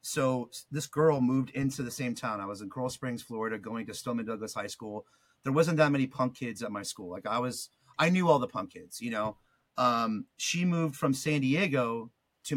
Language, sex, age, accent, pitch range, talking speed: English, male, 30-49, American, 120-150 Hz, 225 wpm